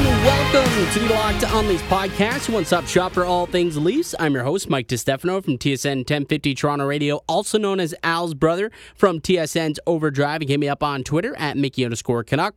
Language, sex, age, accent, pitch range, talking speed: English, male, 20-39, American, 140-185 Hz, 200 wpm